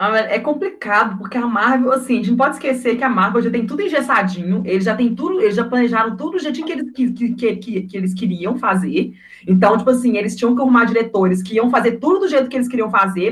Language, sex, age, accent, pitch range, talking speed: Portuguese, female, 20-39, Brazilian, 200-260 Hz, 245 wpm